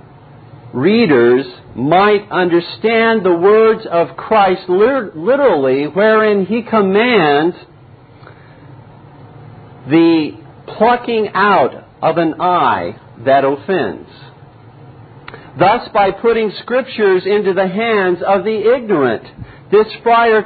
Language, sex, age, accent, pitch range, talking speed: English, male, 50-69, American, 135-200 Hz, 90 wpm